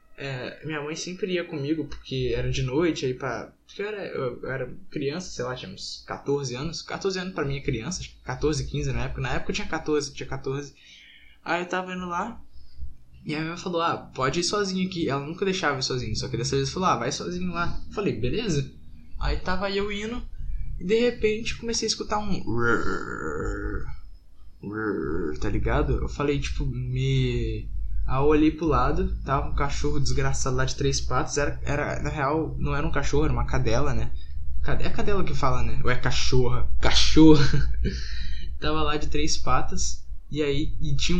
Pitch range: 125-160 Hz